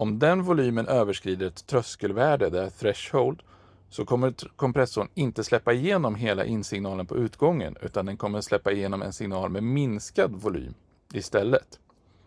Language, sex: Swedish, male